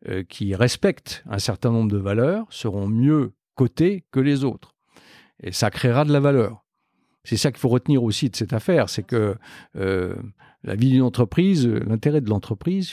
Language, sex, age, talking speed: French, male, 50-69, 175 wpm